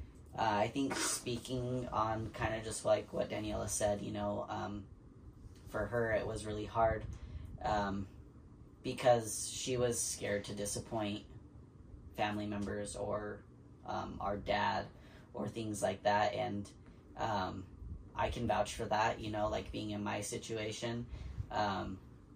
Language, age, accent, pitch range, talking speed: English, 10-29, American, 100-115 Hz, 140 wpm